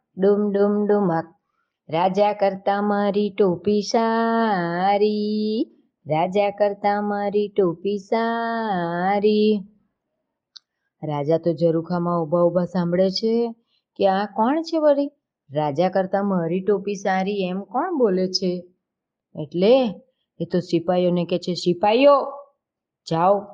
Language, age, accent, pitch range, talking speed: Gujarati, 20-39, native, 175-220 Hz, 55 wpm